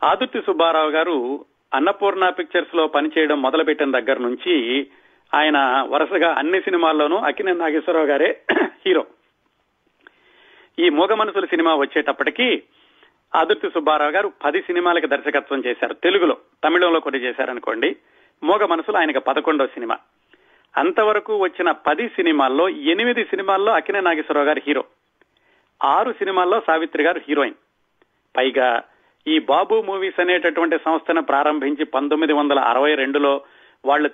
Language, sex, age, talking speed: Telugu, male, 40-59, 115 wpm